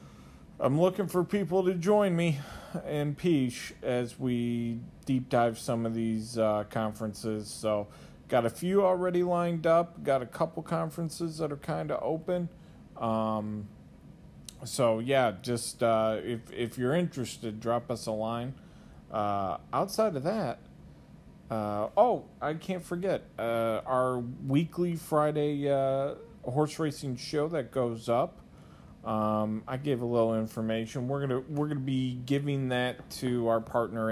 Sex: male